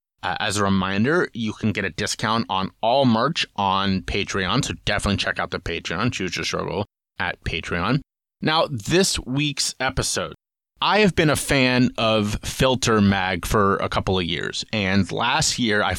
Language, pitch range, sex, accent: English, 95-115 Hz, male, American